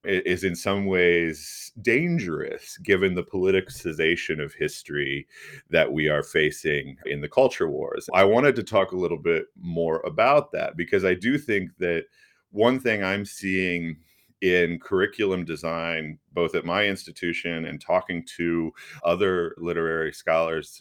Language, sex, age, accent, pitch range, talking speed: English, male, 40-59, American, 85-110 Hz, 145 wpm